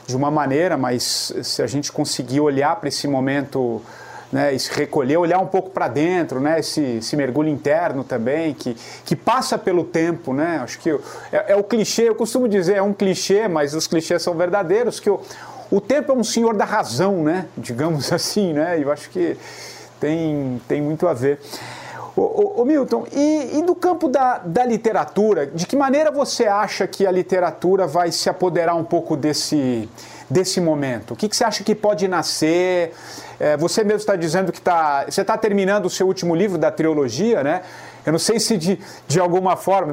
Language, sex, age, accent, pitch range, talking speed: English, male, 40-59, Brazilian, 150-205 Hz, 190 wpm